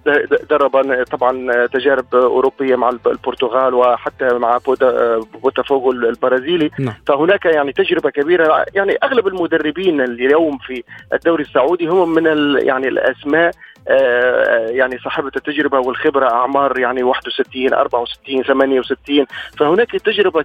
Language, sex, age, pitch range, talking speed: Arabic, male, 40-59, 135-175 Hz, 105 wpm